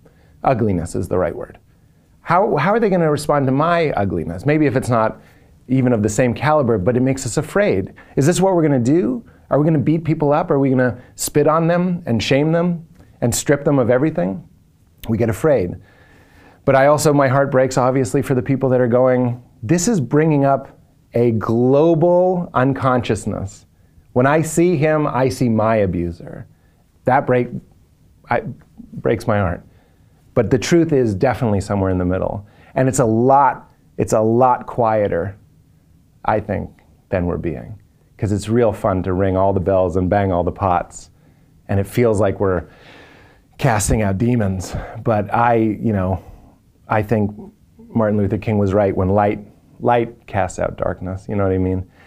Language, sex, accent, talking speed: English, male, American, 185 wpm